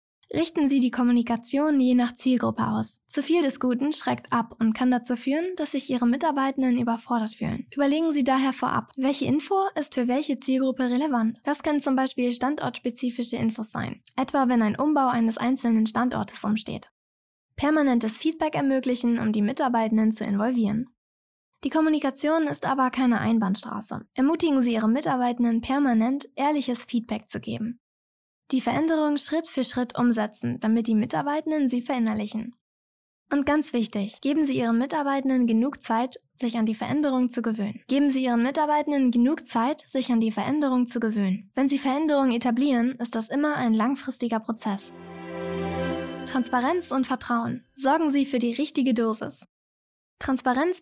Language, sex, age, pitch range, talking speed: German, female, 10-29, 235-275 Hz, 155 wpm